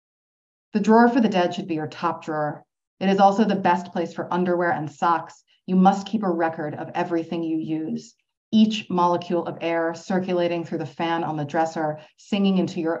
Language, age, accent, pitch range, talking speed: English, 30-49, American, 160-185 Hz, 200 wpm